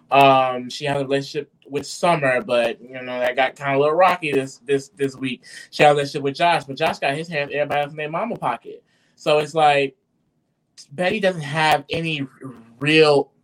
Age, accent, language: 20-39, American, English